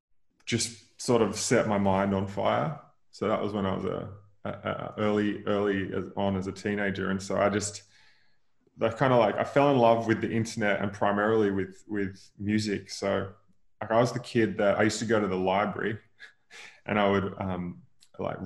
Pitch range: 95-110 Hz